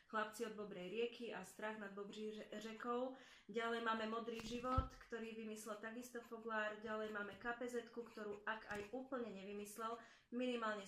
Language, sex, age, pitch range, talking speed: Slovak, female, 30-49, 195-230 Hz, 145 wpm